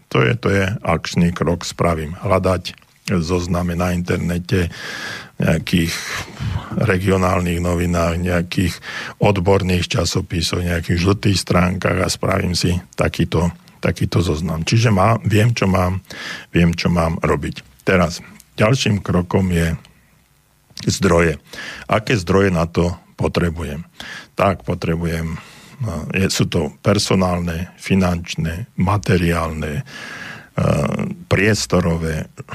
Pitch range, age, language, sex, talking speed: 85-100 Hz, 50-69, Slovak, male, 100 wpm